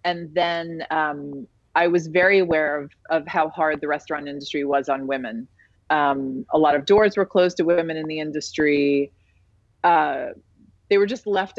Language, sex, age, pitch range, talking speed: English, female, 30-49, 145-185 Hz, 175 wpm